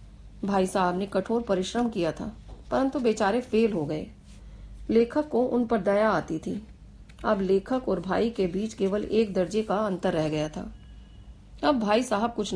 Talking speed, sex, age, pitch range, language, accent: 105 wpm, female, 40-59, 190-235 Hz, Hindi, native